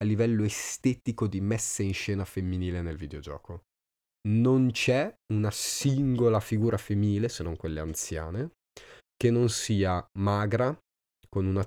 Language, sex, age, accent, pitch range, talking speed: Italian, male, 20-39, native, 80-105 Hz, 135 wpm